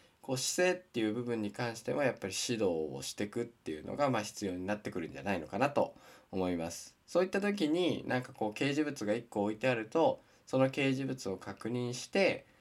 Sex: male